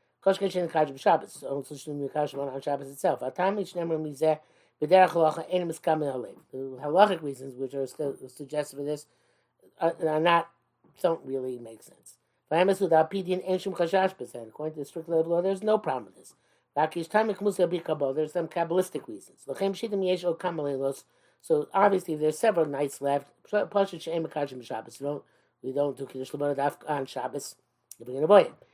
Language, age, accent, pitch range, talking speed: English, 50-69, American, 145-195 Hz, 85 wpm